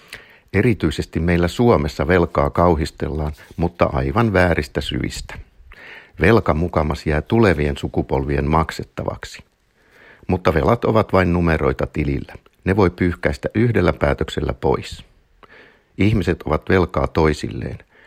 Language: Finnish